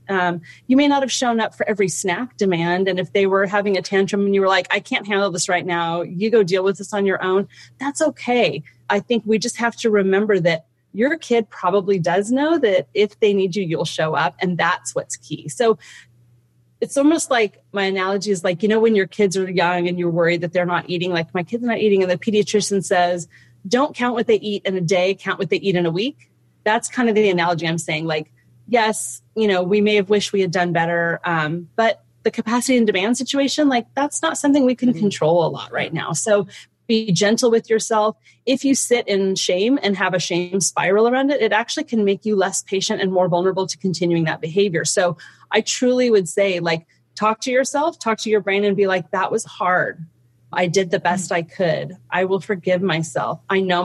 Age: 30-49